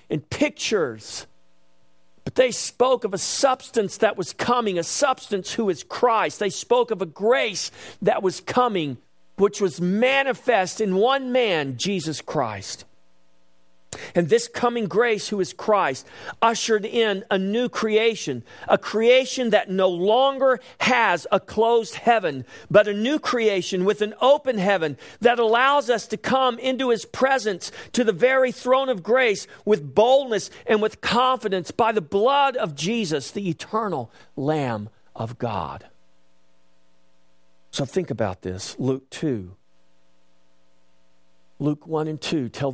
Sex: male